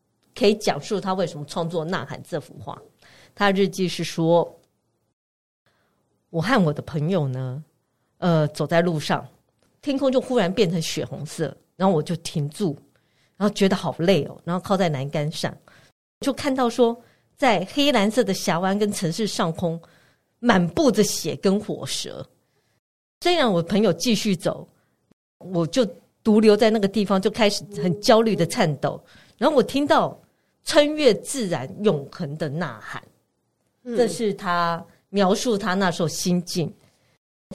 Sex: female